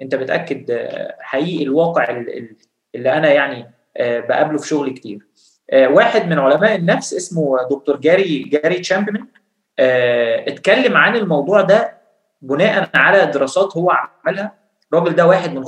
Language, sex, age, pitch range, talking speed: Arabic, male, 20-39, 145-195 Hz, 125 wpm